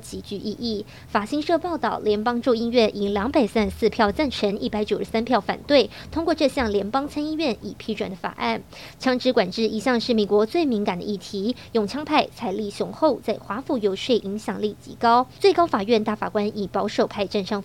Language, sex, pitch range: Chinese, male, 210-255 Hz